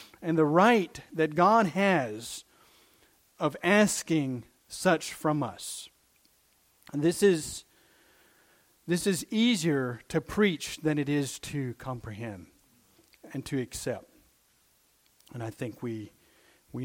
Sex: male